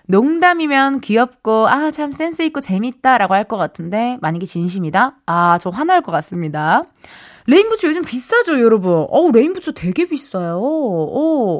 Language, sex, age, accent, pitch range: Korean, female, 20-39, native, 195-295 Hz